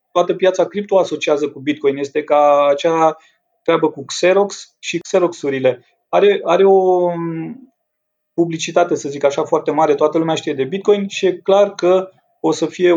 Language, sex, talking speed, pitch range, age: Romanian, male, 160 wpm, 155-190 Hz, 30-49